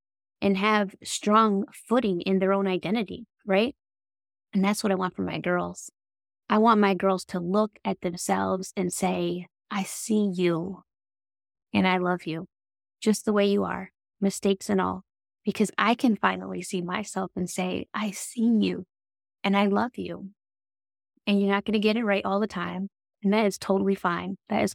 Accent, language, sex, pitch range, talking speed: American, English, female, 175-200 Hz, 180 wpm